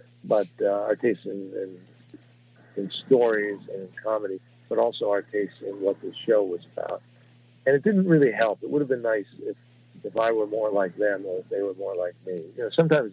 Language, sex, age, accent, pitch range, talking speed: English, male, 60-79, American, 100-125 Hz, 220 wpm